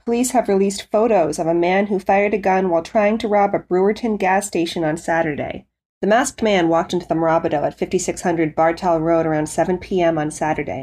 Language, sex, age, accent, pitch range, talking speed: English, female, 30-49, American, 165-200 Hz, 205 wpm